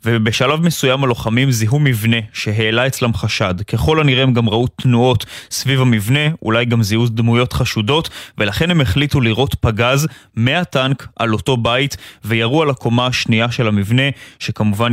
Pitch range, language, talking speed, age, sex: 110-130 Hz, Hebrew, 150 wpm, 20-39, male